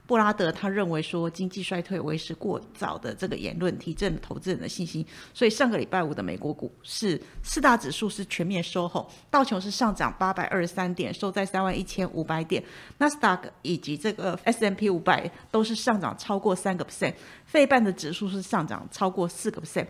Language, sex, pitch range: Chinese, female, 175-220 Hz